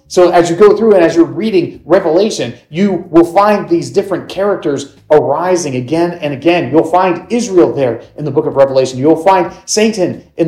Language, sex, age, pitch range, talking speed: English, male, 40-59, 140-185 Hz, 190 wpm